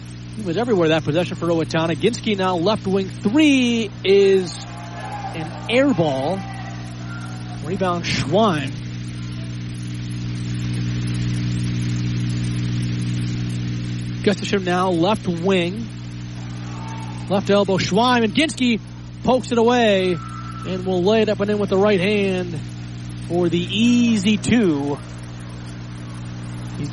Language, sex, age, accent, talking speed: English, male, 30-49, American, 100 wpm